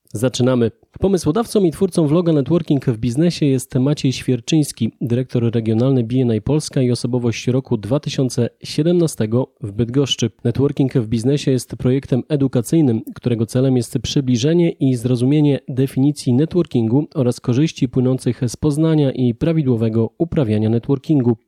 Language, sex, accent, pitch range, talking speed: Polish, male, native, 120-150 Hz, 125 wpm